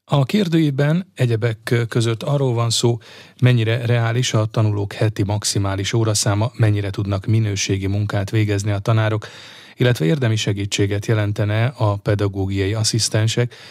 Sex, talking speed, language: male, 125 wpm, Hungarian